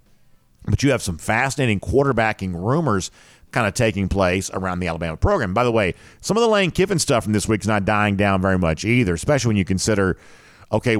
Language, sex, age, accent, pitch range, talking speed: English, male, 50-69, American, 95-125 Hz, 215 wpm